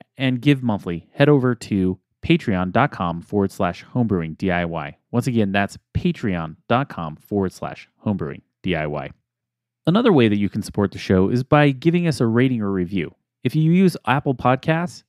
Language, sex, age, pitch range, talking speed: English, male, 30-49, 100-145 Hz, 160 wpm